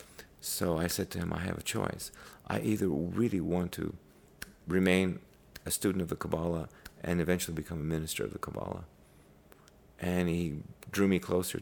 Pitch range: 80-95 Hz